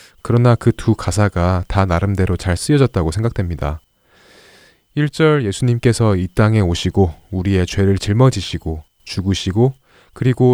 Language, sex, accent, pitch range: Korean, male, native, 95-125 Hz